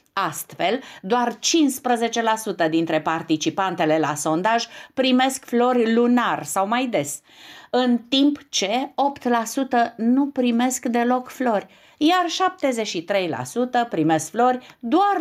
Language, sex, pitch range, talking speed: Romanian, female, 175-270 Hz, 105 wpm